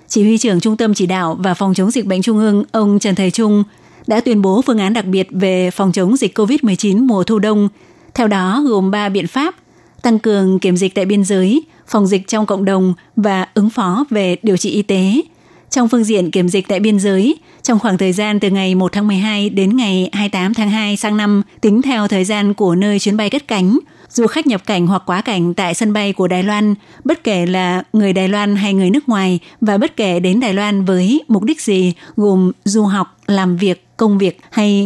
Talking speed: 230 wpm